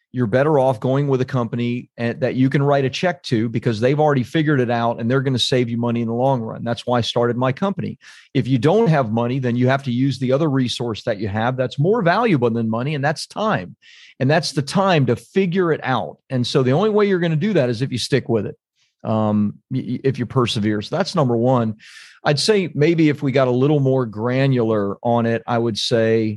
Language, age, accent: English, 40-59, American